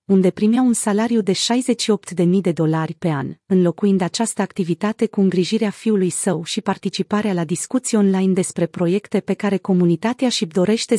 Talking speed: 165 wpm